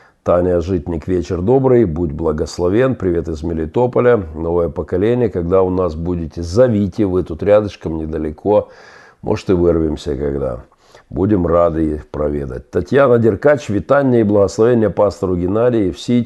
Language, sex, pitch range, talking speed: Russian, male, 85-110 Hz, 135 wpm